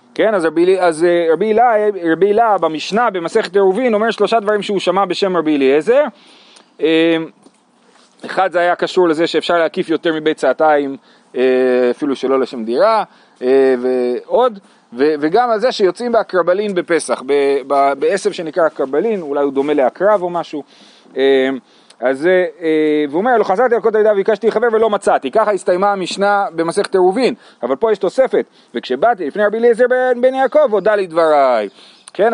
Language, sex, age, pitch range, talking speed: Hebrew, male, 30-49, 155-225 Hz, 155 wpm